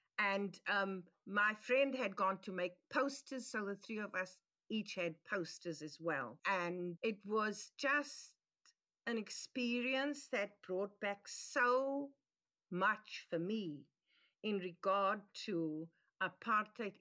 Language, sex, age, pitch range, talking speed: English, female, 50-69, 180-235 Hz, 125 wpm